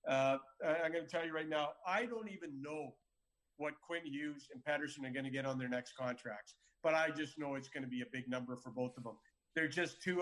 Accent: American